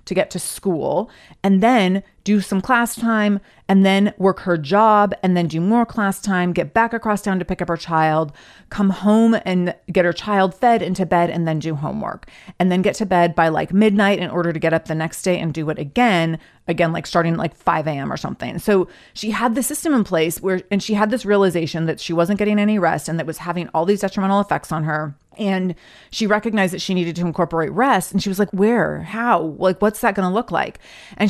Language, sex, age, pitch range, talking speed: English, female, 30-49, 170-210 Hz, 240 wpm